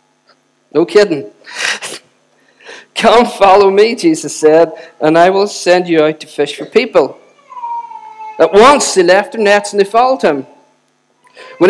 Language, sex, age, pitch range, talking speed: English, male, 50-69, 150-215 Hz, 145 wpm